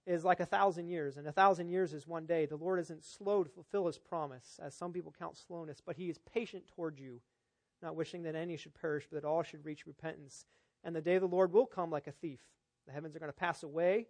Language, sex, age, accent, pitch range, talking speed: English, male, 40-59, American, 155-195 Hz, 260 wpm